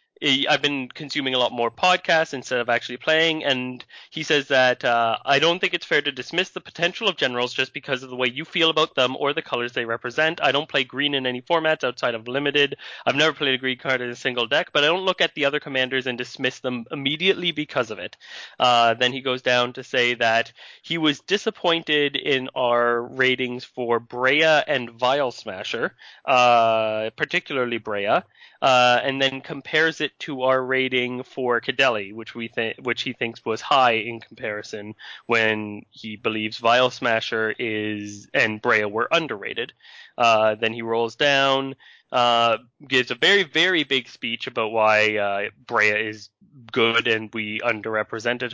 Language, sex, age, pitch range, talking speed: English, male, 20-39, 120-155 Hz, 185 wpm